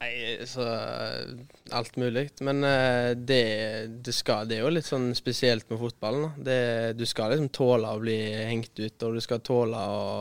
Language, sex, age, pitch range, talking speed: English, male, 20-39, 110-125 Hz, 155 wpm